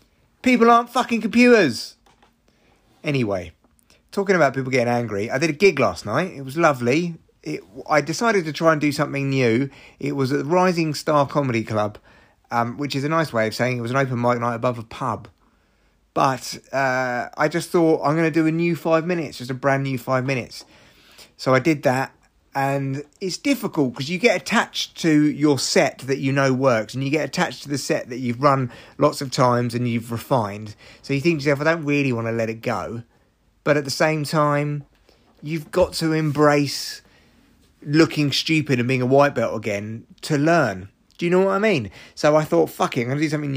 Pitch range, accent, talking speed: 120-160 Hz, British, 210 wpm